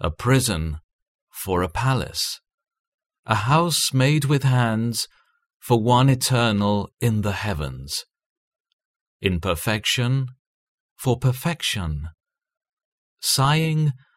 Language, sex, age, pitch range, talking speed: English, male, 40-59, 100-150 Hz, 85 wpm